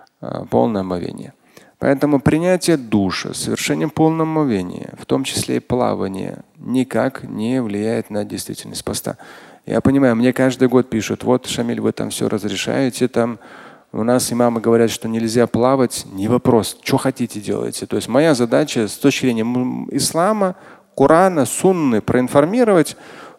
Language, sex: Russian, male